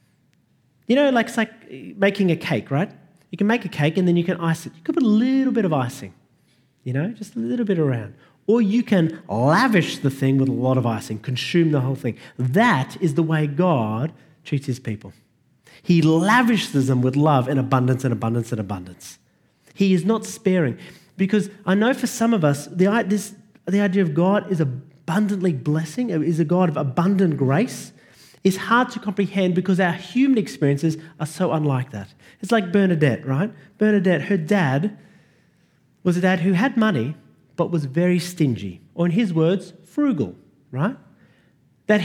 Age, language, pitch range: 30-49, English, 140-205 Hz